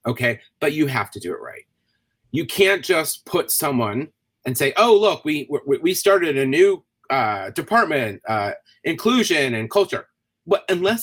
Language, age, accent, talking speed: English, 30-49, American, 170 wpm